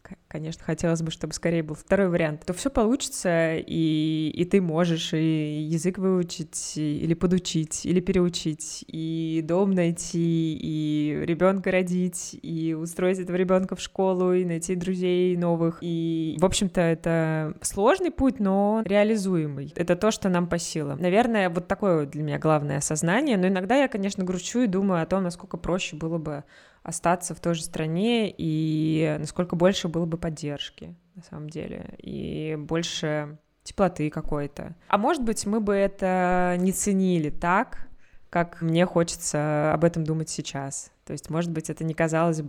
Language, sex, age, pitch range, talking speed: Russian, female, 20-39, 160-185 Hz, 160 wpm